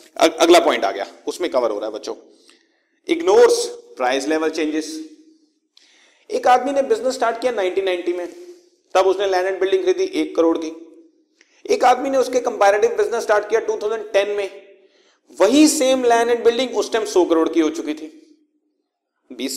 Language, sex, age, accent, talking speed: Hindi, male, 40-59, native, 50 wpm